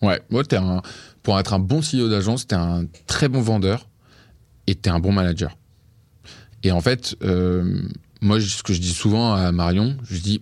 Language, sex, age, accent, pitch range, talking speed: French, male, 20-39, French, 90-115 Hz, 185 wpm